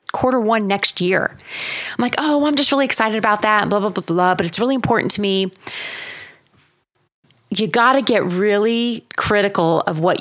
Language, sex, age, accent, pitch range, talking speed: English, female, 30-49, American, 170-225 Hz, 180 wpm